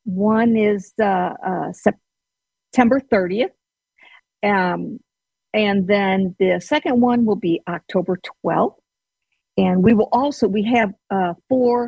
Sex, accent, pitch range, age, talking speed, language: female, American, 190-240 Hz, 50-69, 120 wpm, English